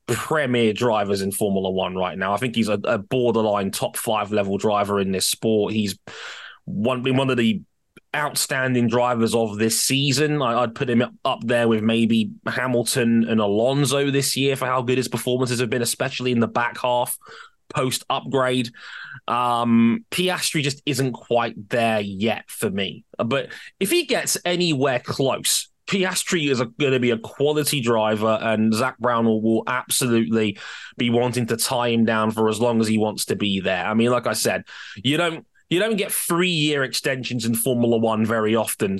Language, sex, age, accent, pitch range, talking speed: English, male, 20-39, British, 110-130 Hz, 180 wpm